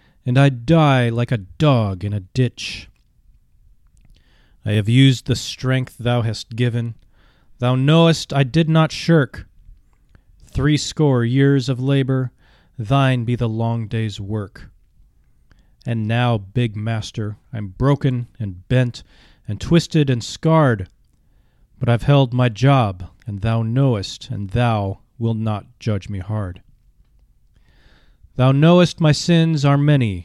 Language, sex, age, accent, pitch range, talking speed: English, male, 30-49, American, 105-135 Hz, 130 wpm